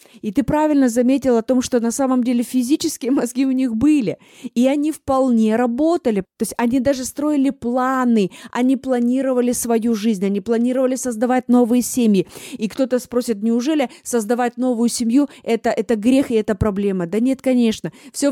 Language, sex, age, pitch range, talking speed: Russian, female, 20-39, 220-265 Hz, 165 wpm